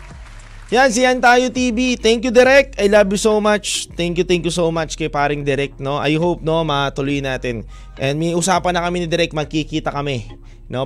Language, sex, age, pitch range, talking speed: Filipino, male, 20-39, 135-200 Hz, 210 wpm